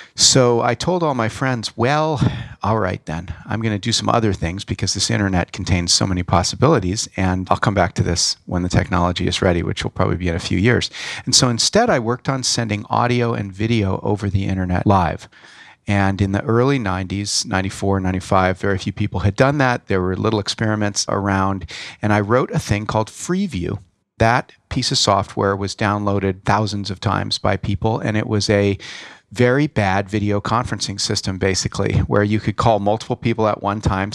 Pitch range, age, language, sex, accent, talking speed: 95-120 Hz, 40-59, English, male, American, 195 wpm